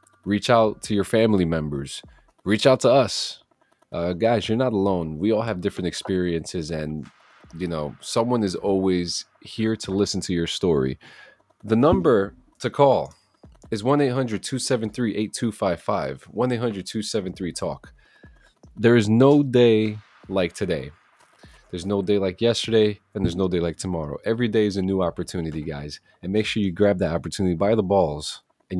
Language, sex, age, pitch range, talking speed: English, male, 30-49, 90-115 Hz, 155 wpm